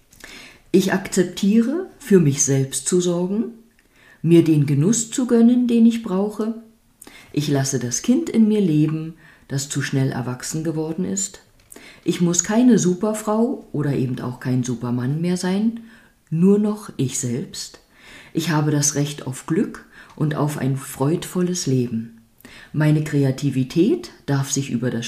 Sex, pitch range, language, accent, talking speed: female, 130-190 Hz, German, German, 145 wpm